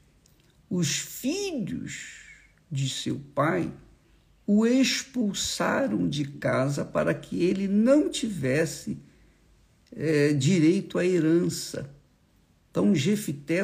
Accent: Brazilian